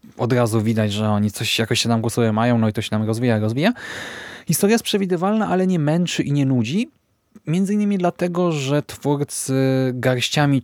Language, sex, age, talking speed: Polish, male, 20-39, 185 wpm